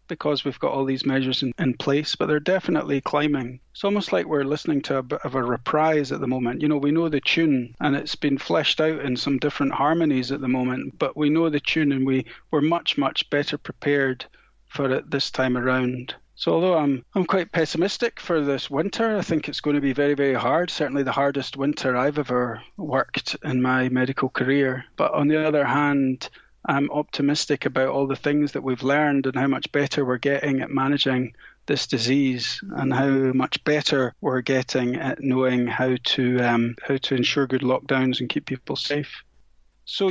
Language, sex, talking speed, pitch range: English, male, 205 wpm, 130-150 Hz